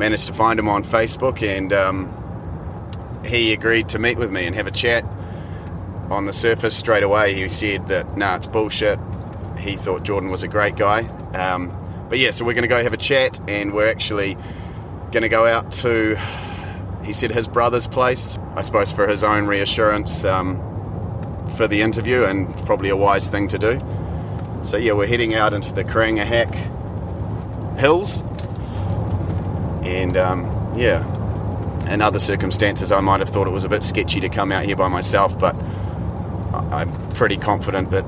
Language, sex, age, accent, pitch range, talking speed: English, male, 30-49, Australian, 95-110 Hz, 175 wpm